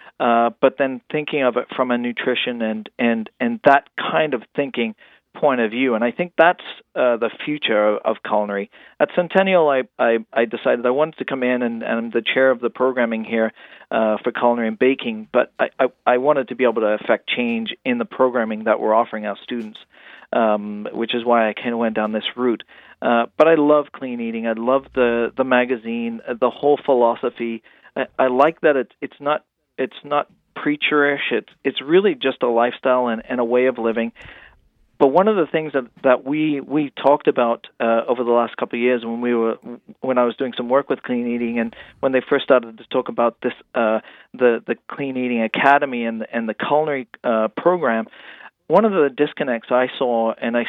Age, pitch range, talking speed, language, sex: 40-59, 115-140 Hz, 215 wpm, English, male